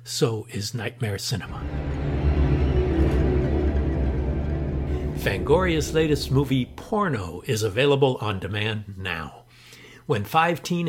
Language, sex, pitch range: English, male, 110-145 Hz